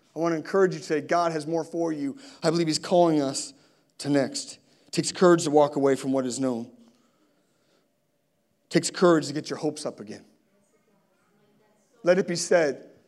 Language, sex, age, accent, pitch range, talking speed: English, male, 30-49, American, 150-185 Hz, 195 wpm